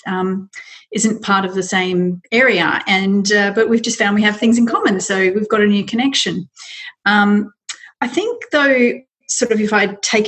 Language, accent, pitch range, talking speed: English, Australian, 190-250 Hz, 195 wpm